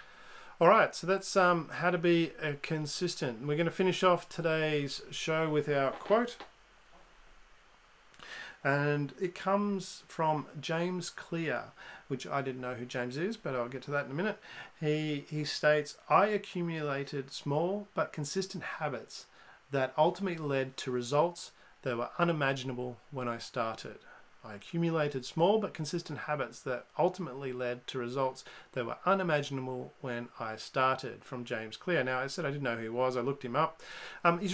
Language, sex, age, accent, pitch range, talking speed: English, male, 40-59, Australian, 130-175 Hz, 165 wpm